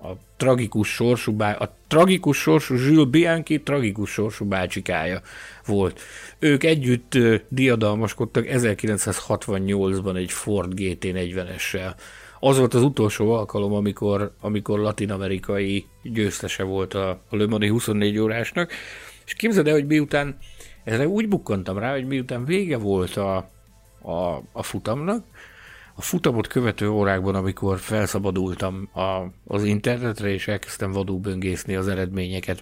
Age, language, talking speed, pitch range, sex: 60-79, Hungarian, 115 wpm, 95-120 Hz, male